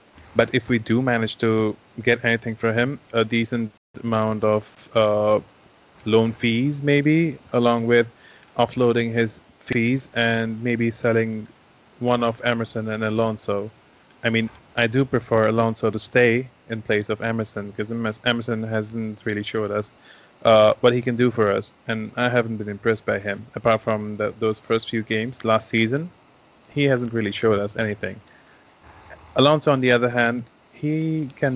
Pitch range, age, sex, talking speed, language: 110-120 Hz, 20-39, male, 160 wpm, English